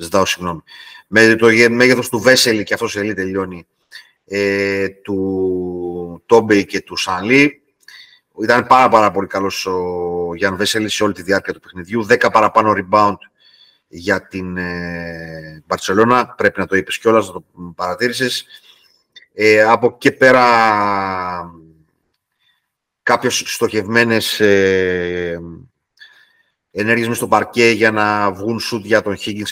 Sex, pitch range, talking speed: male, 95-135 Hz, 120 wpm